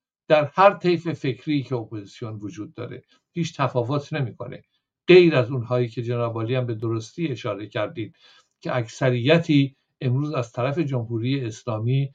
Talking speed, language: 140 wpm, Persian